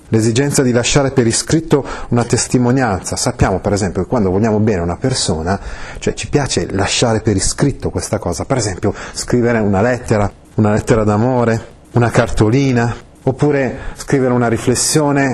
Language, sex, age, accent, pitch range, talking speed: Italian, male, 30-49, native, 100-130 Hz, 150 wpm